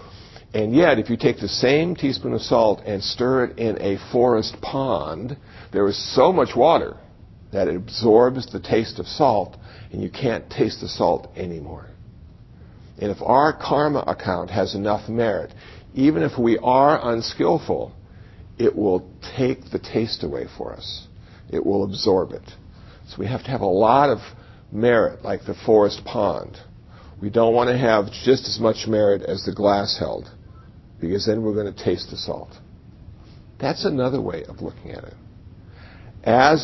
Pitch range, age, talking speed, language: 100-120 Hz, 60-79, 170 wpm, English